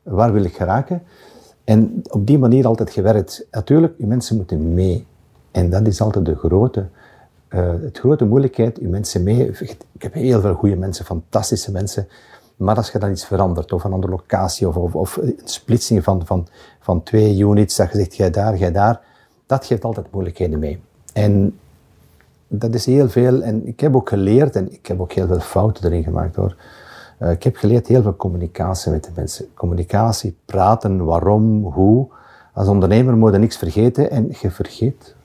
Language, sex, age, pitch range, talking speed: Dutch, male, 50-69, 90-115 Hz, 185 wpm